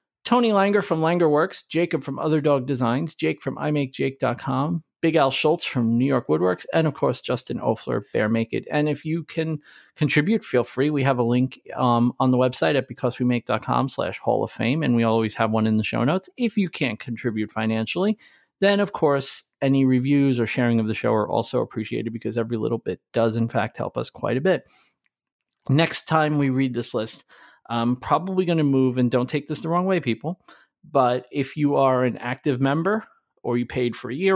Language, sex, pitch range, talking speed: English, male, 120-150 Hz, 210 wpm